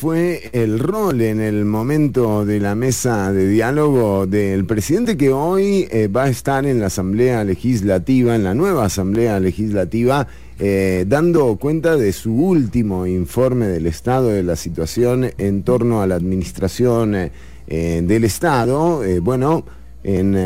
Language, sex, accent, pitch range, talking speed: English, male, Argentinian, 95-130 Hz, 150 wpm